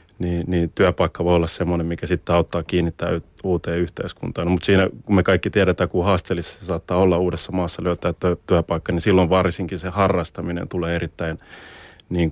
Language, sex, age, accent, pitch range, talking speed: Finnish, male, 30-49, native, 85-100 Hz, 170 wpm